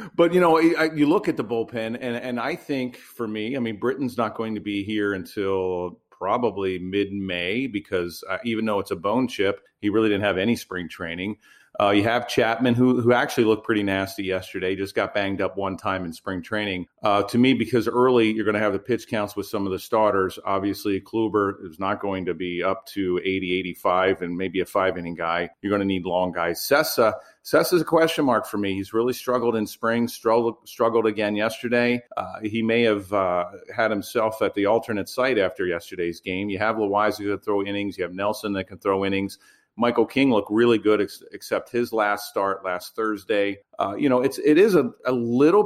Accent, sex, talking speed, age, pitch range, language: American, male, 220 wpm, 40-59, 95-120 Hz, English